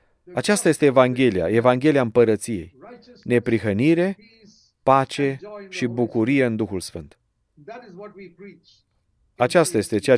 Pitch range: 120-170 Hz